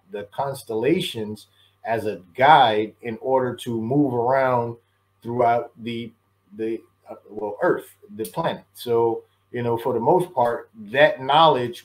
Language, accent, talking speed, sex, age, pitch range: English, American, 135 wpm, male, 30-49, 115-140 Hz